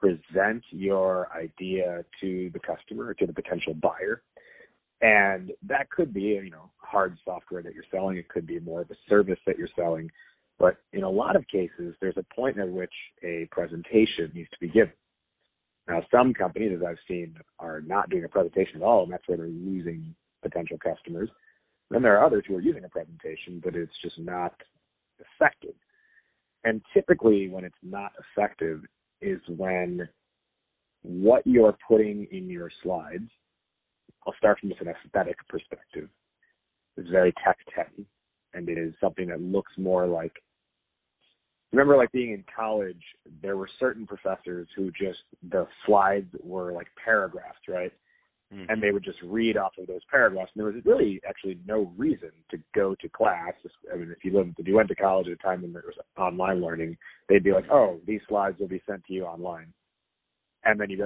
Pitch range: 90-105 Hz